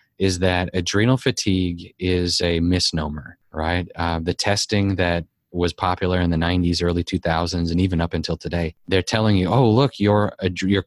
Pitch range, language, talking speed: 85-100 Hz, English, 170 wpm